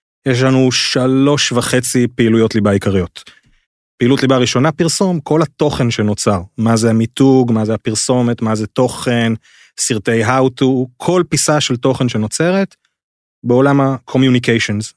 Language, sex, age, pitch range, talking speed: English, male, 30-49, 110-140 Hz, 130 wpm